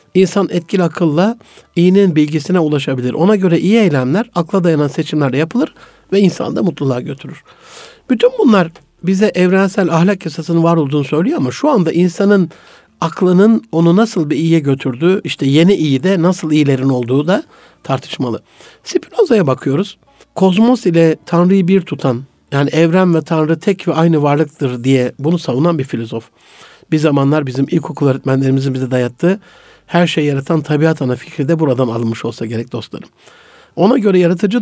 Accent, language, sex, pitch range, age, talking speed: native, Turkish, male, 145-195 Hz, 60-79, 155 wpm